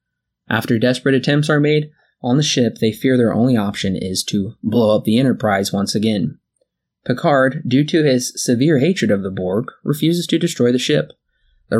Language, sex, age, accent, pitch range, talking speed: English, male, 20-39, American, 105-135 Hz, 185 wpm